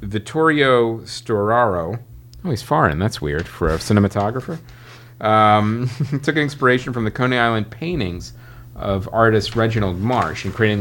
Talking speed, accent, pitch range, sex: 135 wpm, American, 100-125 Hz, male